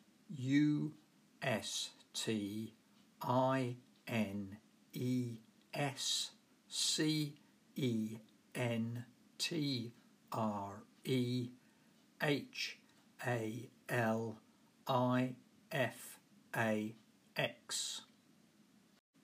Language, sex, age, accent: English, male, 50-69, British